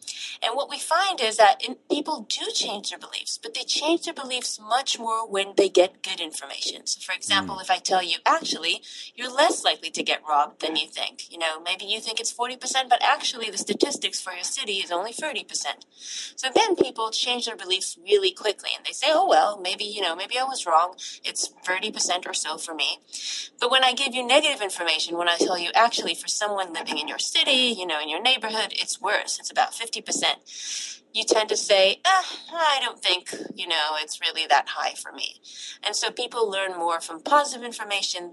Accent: American